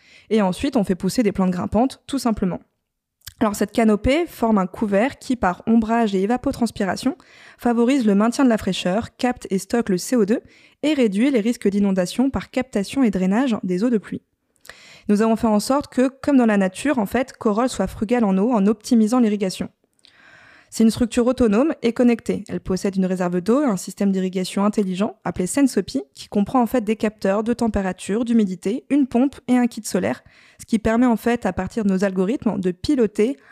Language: French